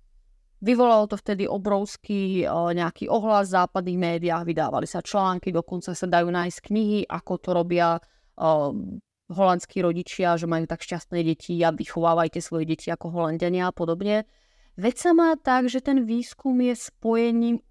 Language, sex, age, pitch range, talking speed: Czech, female, 30-49, 175-210 Hz, 150 wpm